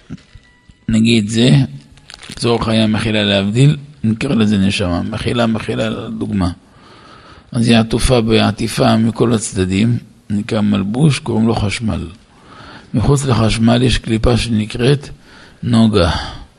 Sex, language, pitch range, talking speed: male, Hebrew, 110-130 Hz, 105 wpm